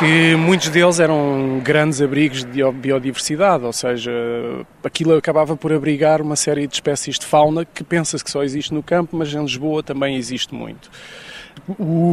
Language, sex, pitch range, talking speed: Portuguese, male, 145-180 Hz, 170 wpm